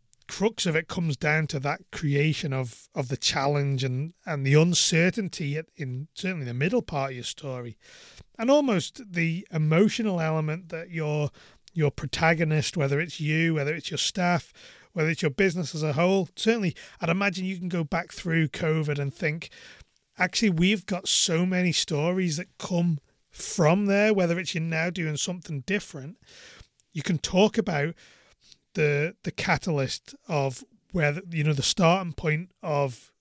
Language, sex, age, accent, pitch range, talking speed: English, male, 30-49, British, 145-185 Hz, 165 wpm